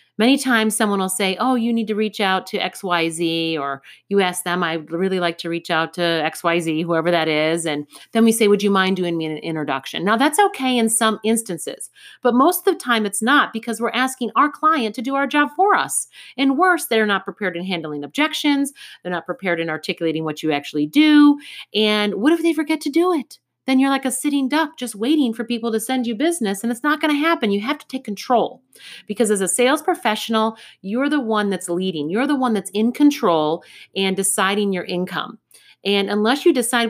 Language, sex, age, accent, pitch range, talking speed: English, female, 40-59, American, 180-255 Hz, 225 wpm